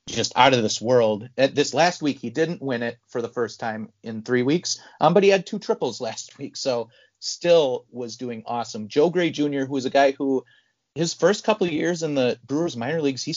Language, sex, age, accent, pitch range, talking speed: English, male, 30-49, American, 115-145 Hz, 235 wpm